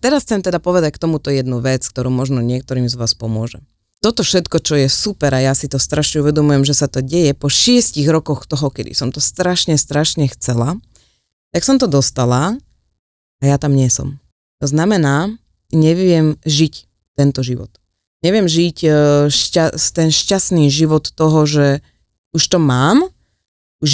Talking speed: 165 wpm